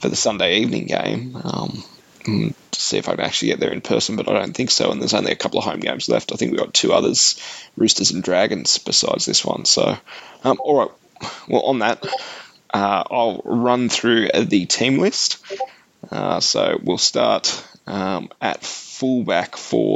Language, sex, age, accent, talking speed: English, male, 20-39, Australian, 190 wpm